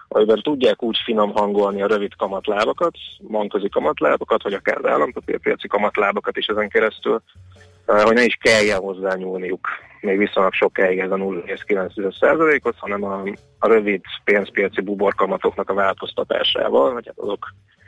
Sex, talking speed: male, 140 wpm